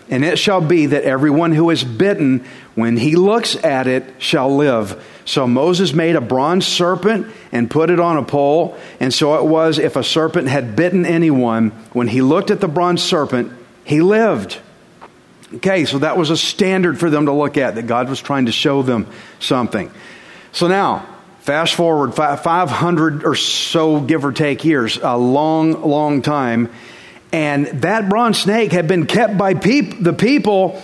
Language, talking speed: English, 175 wpm